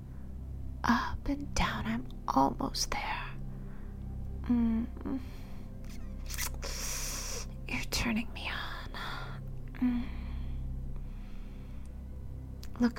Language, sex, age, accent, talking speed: English, female, 30-49, American, 60 wpm